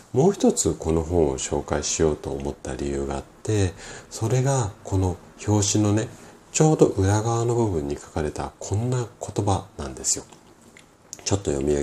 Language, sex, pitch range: Japanese, male, 80-105 Hz